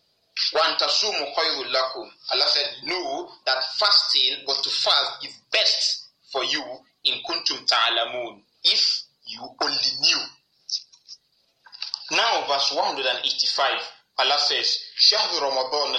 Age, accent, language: 30-49, Nigerian, English